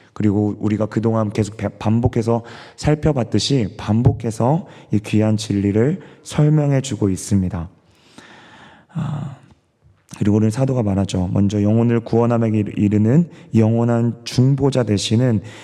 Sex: male